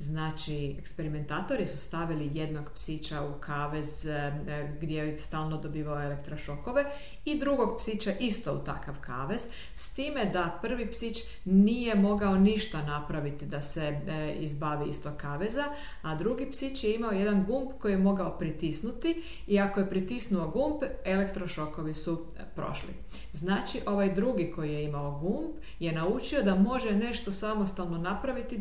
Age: 50-69